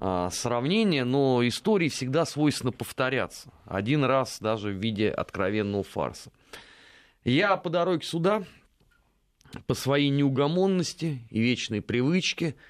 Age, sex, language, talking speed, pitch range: 30-49, male, Russian, 110 wpm, 115-150 Hz